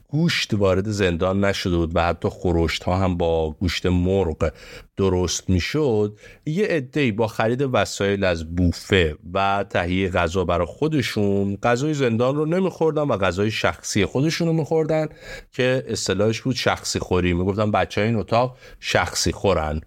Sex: male